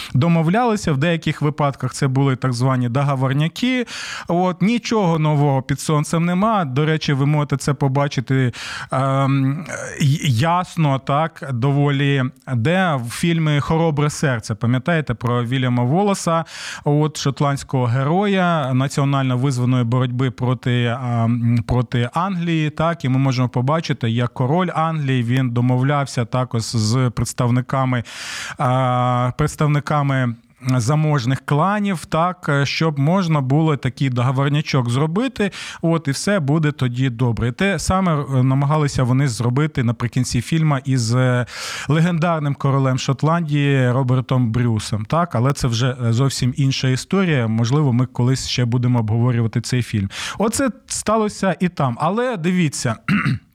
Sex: male